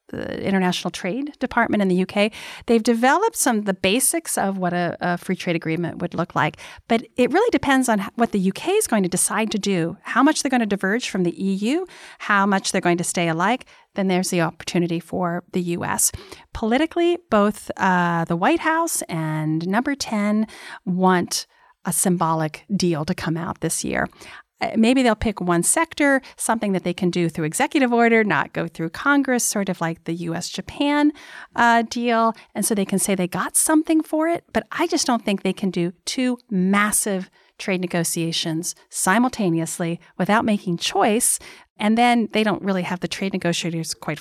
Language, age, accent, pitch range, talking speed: English, 40-59, American, 175-235 Hz, 185 wpm